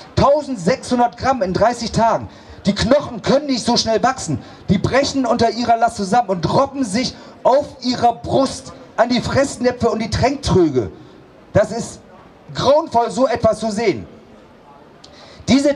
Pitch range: 195-245 Hz